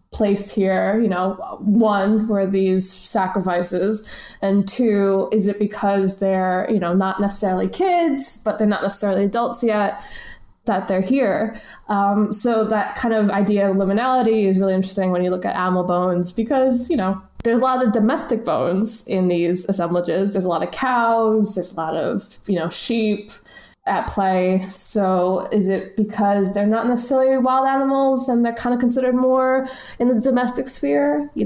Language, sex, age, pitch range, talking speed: English, female, 20-39, 195-235 Hz, 175 wpm